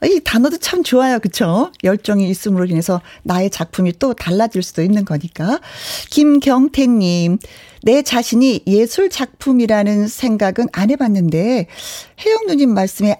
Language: Korean